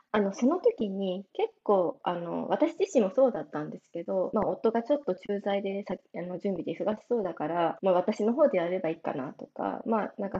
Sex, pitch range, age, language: female, 185-265 Hz, 20-39, Japanese